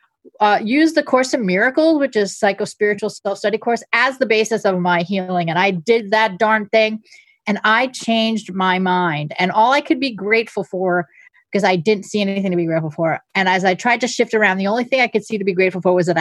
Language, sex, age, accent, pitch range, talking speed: English, female, 40-59, American, 185-230 Hz, 235 wpm